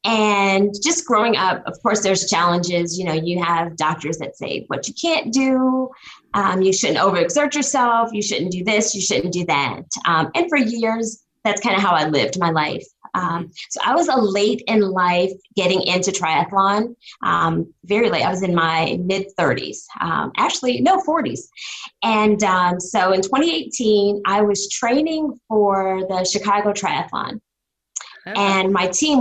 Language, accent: English, American